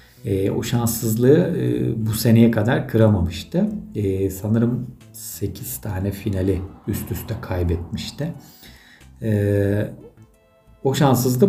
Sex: male